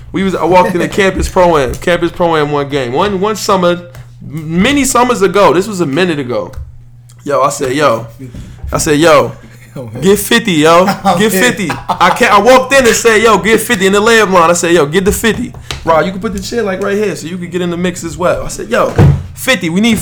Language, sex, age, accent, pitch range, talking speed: English, male, 20-39, American, 155-215 Hz, 245 wpm